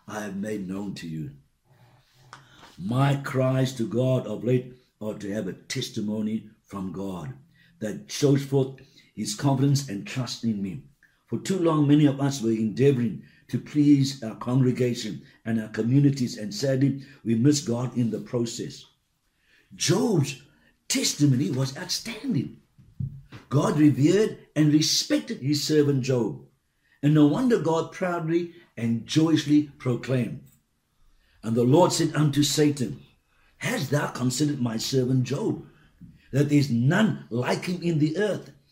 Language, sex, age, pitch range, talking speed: English, male, 60-79, 120-150 Hz, 140 wpm